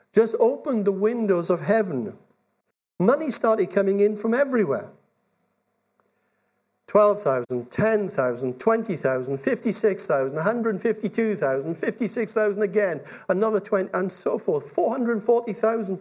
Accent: British